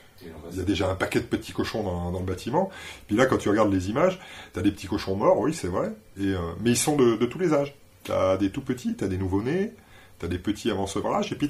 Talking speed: 280 wpm